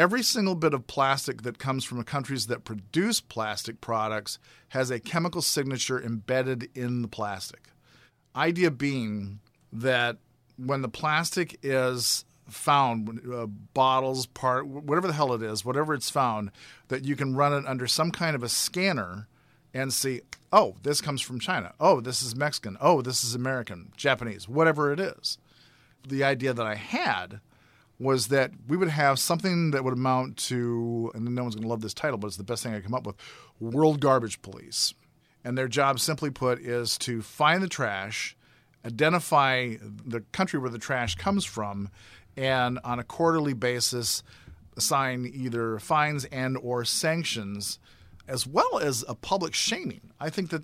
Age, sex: 40-59, male